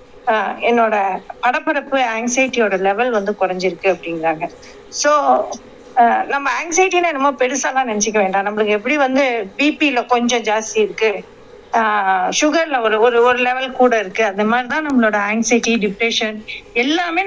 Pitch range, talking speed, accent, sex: 220-290 Hz, 125 wpm, native, female